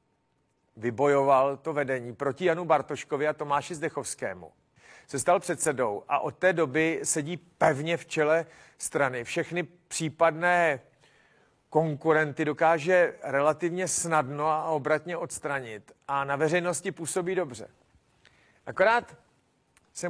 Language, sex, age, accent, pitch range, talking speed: Czech, male, 40-59, native, 135-170 Hz, 110 wpm